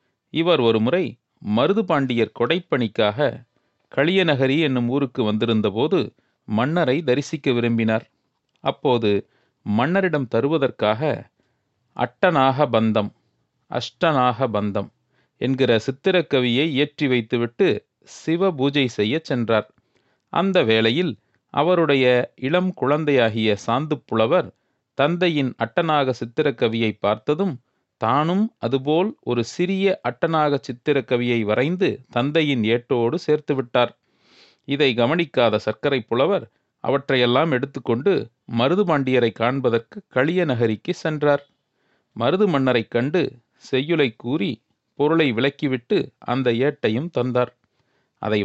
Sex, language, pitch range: male, Tamil, 120-155 Hz